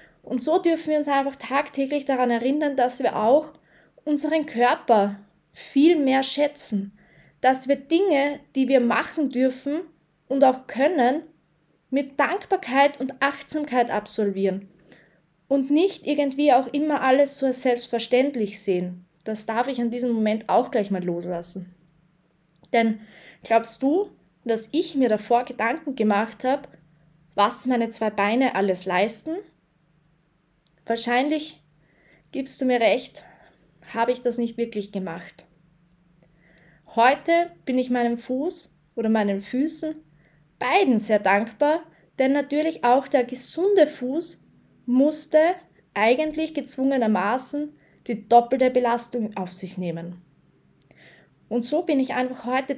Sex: female